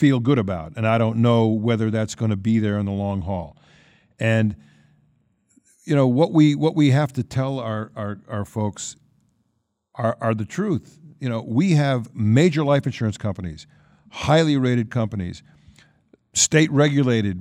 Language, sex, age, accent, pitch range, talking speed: English, male, 50-69, American, 100-135 Hz, 165 wpm